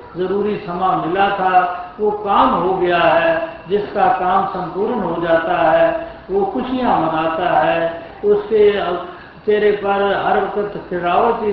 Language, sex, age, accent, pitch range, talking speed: Hindi, male, 60-79, native, 180-210 Hz, 130 wpm